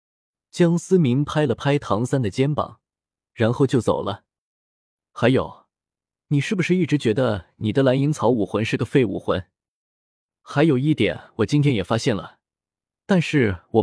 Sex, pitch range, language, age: male, 110-160 Hz, Chinese, 20-39